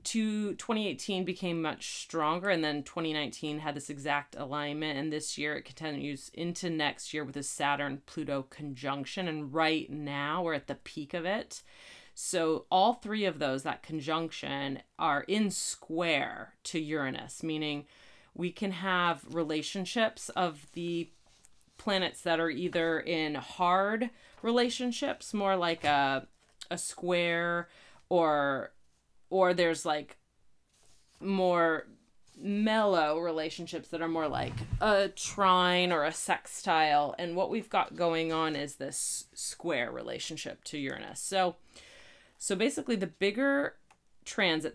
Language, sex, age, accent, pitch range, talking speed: English, female, 30-49, American, 145-180 Hz, 130 wpm